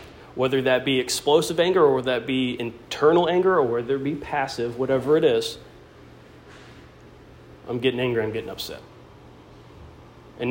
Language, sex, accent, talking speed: English, male, American, 150 wpm